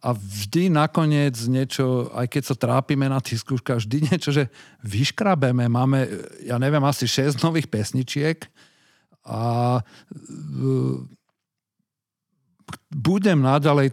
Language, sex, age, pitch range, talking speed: Slovak, male, 50-69, 120-145 Hz, 110 wpm